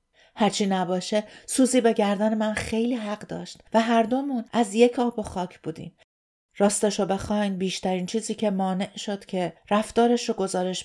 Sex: female